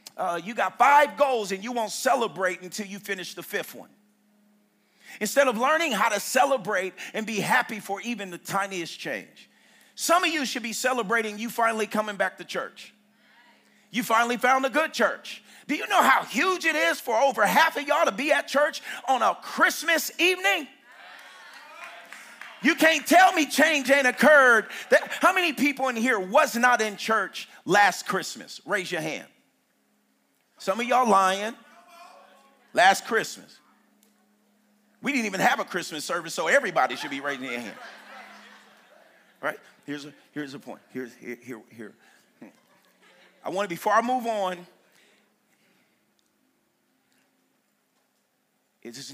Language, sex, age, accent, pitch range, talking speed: English, male, 40-59, American, 185-265 Hz, 155 wpm